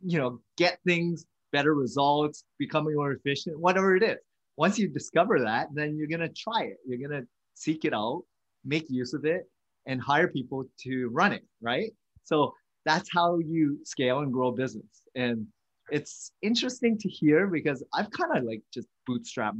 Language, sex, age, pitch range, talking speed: English, male, 30-49, 120-160 Hz, 180 wpm